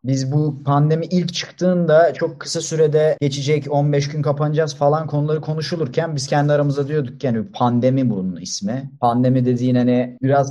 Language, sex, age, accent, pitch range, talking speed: Turkish, male, 30-49, native, 110-145 Hz, 160 wpm